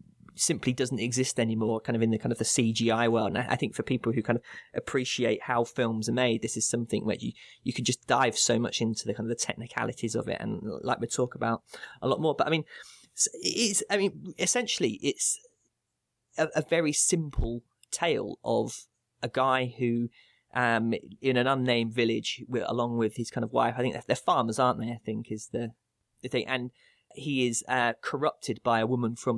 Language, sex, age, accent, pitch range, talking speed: English, male, 20-39, British, 115-130 Hz, 210 wpm